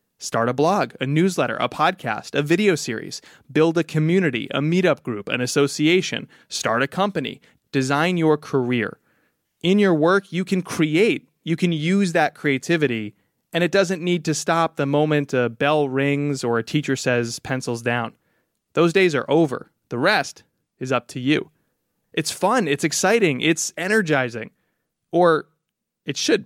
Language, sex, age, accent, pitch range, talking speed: English, male, 20-39, American, 130-170 Hz, 160 wpm